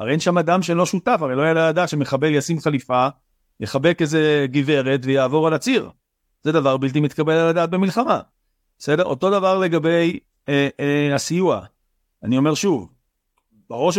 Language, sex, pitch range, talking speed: Hebrew, male, 135-165 Hz, 160 wpm